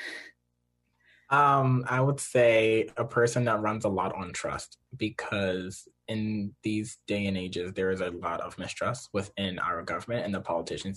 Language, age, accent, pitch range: English, 20-39, American, 100-115 Hz